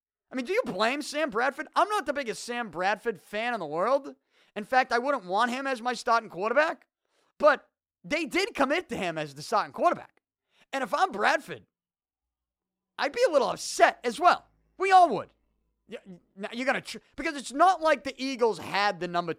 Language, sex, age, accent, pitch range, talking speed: English, male, 30-49, American, 210-300 Hz, 195 wpm